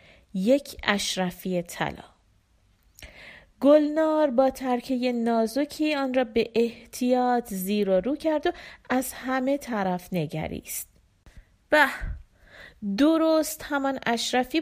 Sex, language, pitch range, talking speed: female, Persian, 190-265 Hz, 100 wpm